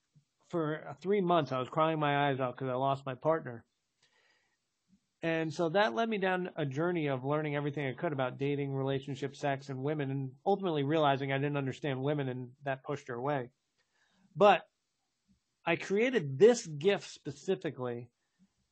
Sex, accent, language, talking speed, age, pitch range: male, American, English, 165 wpm, 40-59, 135-170 Hz